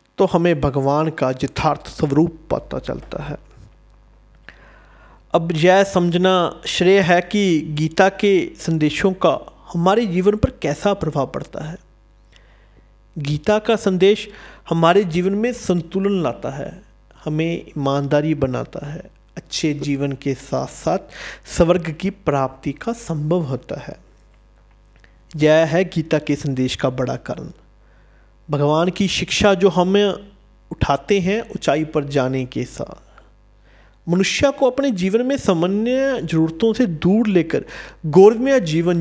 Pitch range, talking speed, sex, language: 150-195 Hz, 130 wpm, male, Hindi